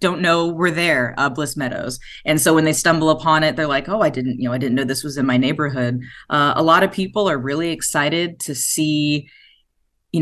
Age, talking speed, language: 30-49, 235 wpm, English